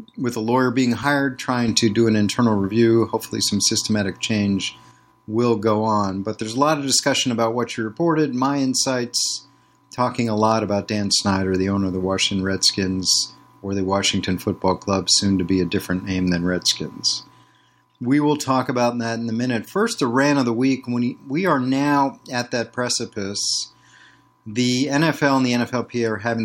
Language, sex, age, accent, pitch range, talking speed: English, male, 40-59, American, 100-130 Hz, 190 wpm